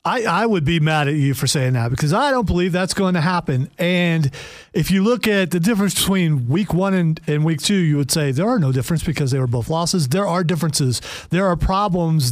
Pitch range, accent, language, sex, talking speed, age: 150-190 Hz, American, English, male, 245 wpm, 40-59